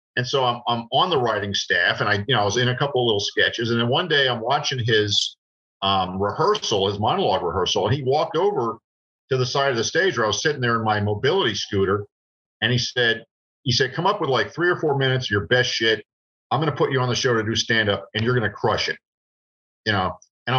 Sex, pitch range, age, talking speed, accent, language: male, 115-140 Hz, 50-69, 250 wpm, American, English